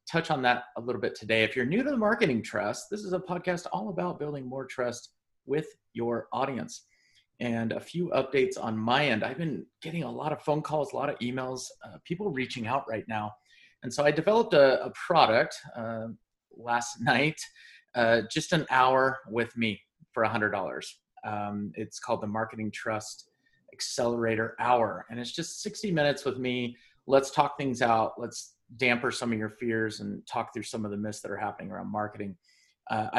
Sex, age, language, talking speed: male, 30-49, English, 195 wpm